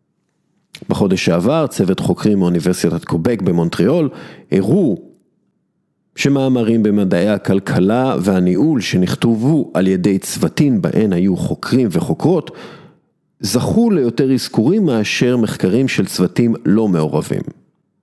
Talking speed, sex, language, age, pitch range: 100 wpm, male, English, 50-69, 95-140 Hz